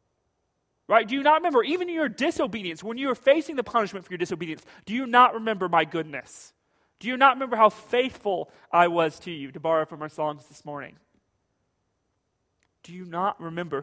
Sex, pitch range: male, 180-245 Hz